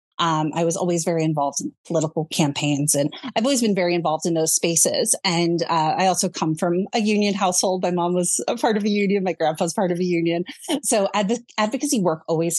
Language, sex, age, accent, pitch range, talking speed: English, female, 30-49, American, 170-205 Hz, 220 wpm